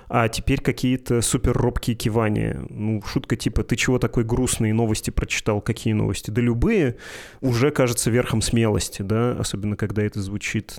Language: Russian